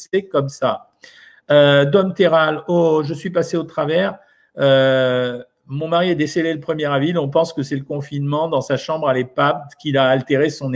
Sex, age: male, 50-69